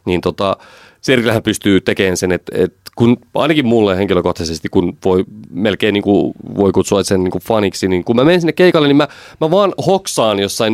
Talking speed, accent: 190 wpm, native